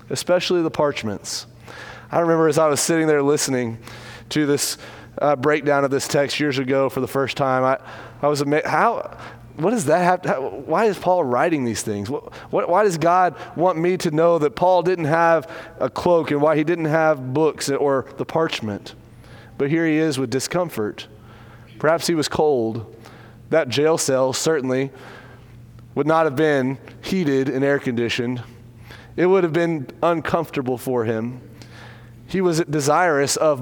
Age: 30-49